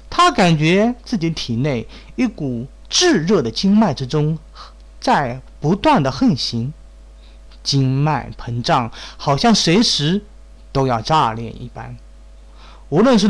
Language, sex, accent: Chinese, male, native